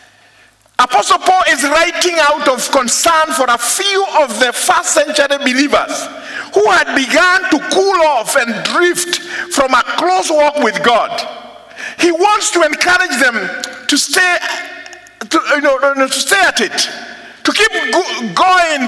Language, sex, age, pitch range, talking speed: English, male, 50-69, 235-340 Hz, 145 wpm